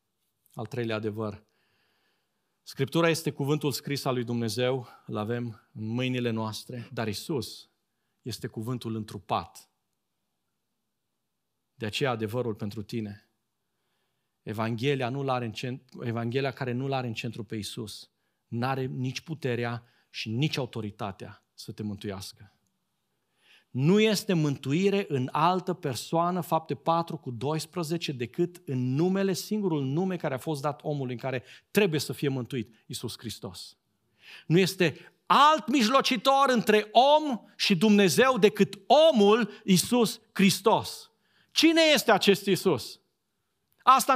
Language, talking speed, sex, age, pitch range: Romanian, 125 wpm, male, 40-59, 120-200 Hz